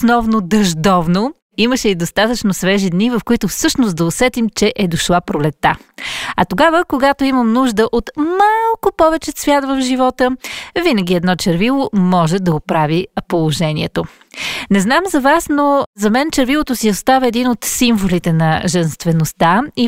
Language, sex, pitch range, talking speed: Bulgarian, female, 180-250 Hz, 150 wpm